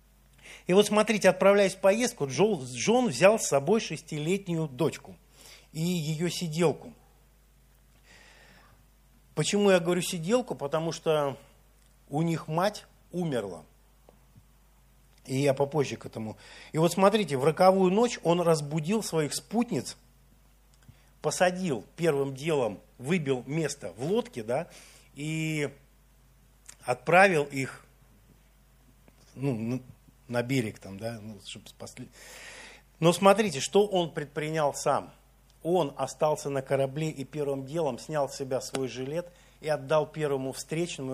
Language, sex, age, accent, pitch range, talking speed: Russian, male, 50-69, native, 130-170 Hz, 120 wpm